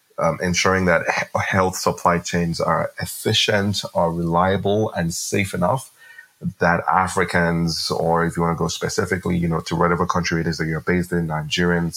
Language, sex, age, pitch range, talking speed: English, male, 30-49, 85-90 Hz, 175 wpm